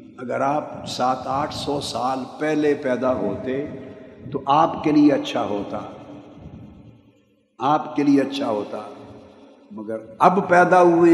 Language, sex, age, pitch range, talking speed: Urdu, male, 50-69, 120-150 Hz, 130 wpm